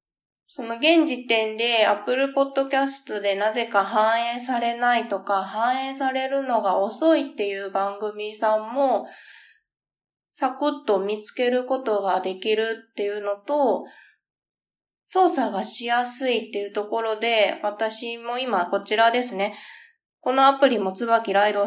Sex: female